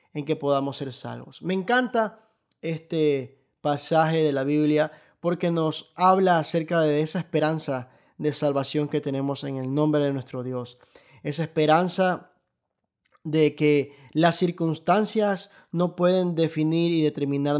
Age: 20-39